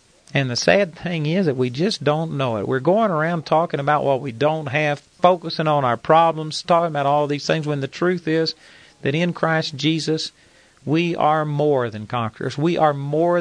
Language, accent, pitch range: English, American, 130-165 Hz